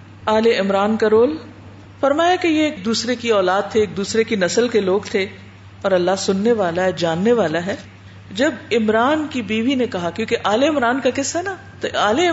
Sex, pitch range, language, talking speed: female, 175-265 Hz, Urdu, 200 wpm